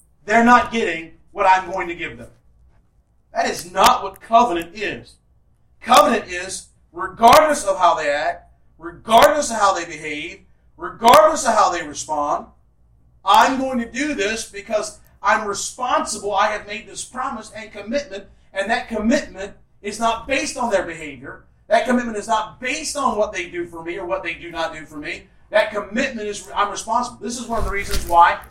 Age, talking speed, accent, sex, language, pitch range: 40-59, 185 wpm, American, male, English, 190-240 Hz